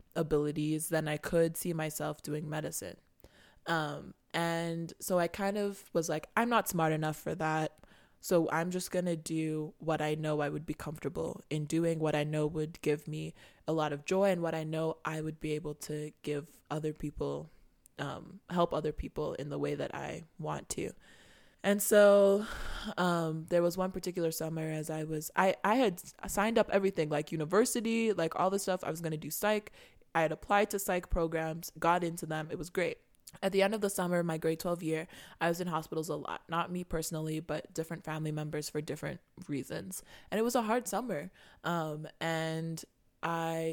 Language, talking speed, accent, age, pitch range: English, 200 wpm, American, 20-39, 155-180 Hz